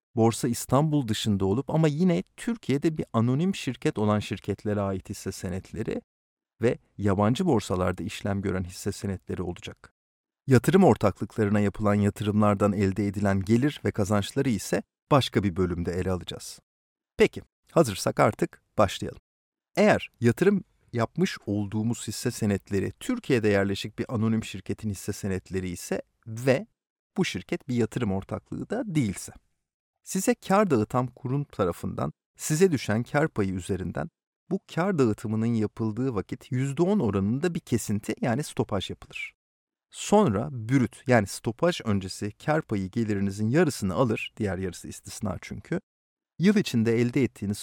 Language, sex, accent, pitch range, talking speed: Turkish, male, native, 100-135 Hz, 130 wpm